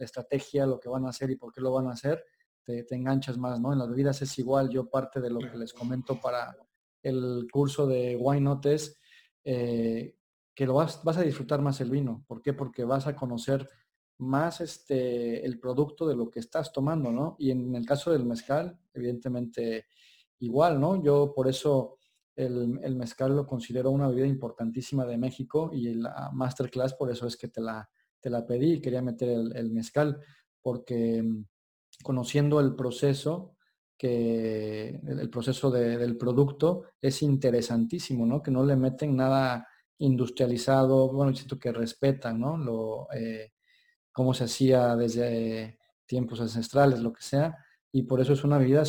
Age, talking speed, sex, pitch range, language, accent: 40-59, 175 wpm, male, 120-145 Hz, Spanish, Mexican